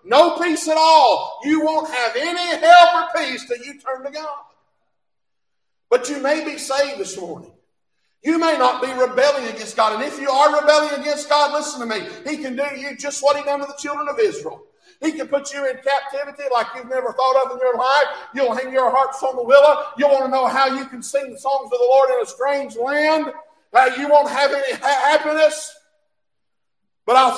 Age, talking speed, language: 50-69, 215 wpm, English